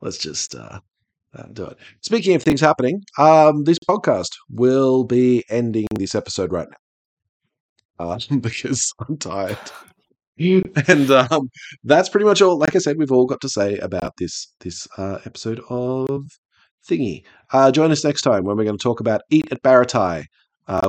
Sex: male